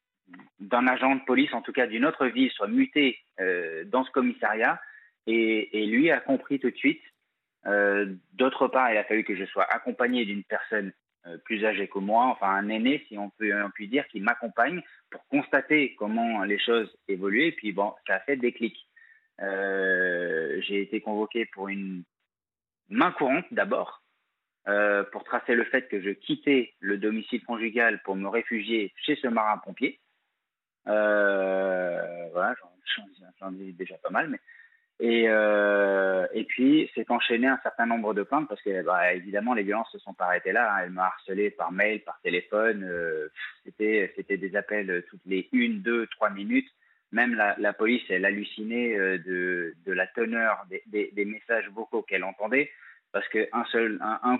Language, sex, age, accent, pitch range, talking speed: French, male, 30-49, French, 100-125 Hz, 180 wpm